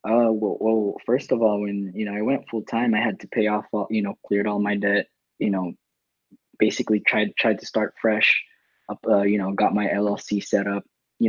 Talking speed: 230 wpm